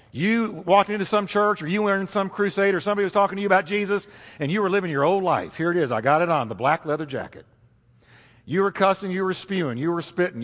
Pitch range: 145-230 Hz